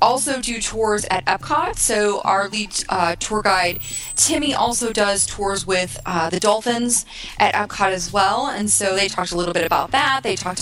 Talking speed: 190 wpm